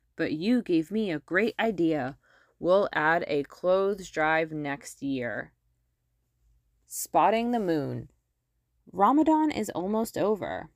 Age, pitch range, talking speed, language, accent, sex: 20-39, 145-215 Hz, 115 wpm, English, American, female